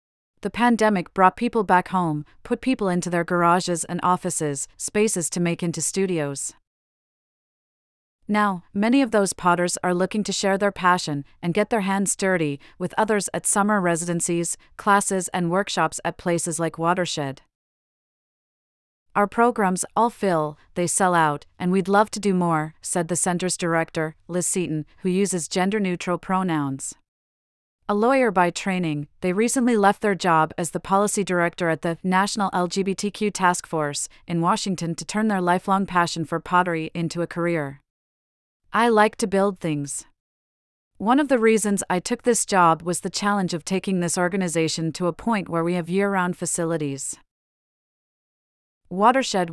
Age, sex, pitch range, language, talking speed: 40-59, female, 165-200 Hz, English, 155 wpm